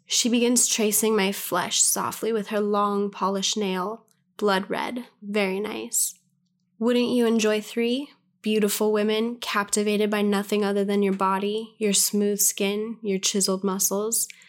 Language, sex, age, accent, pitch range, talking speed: English, female, 10-29, American, 195-225 Hz, 140 wpm